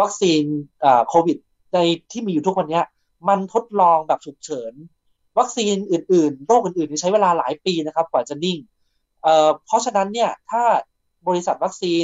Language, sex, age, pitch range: Thai, male, 20-39, 155-195 Hz